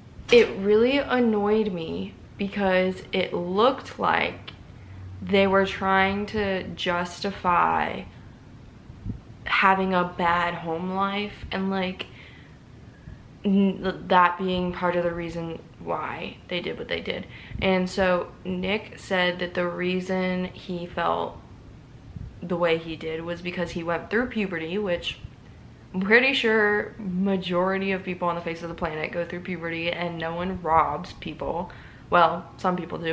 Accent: American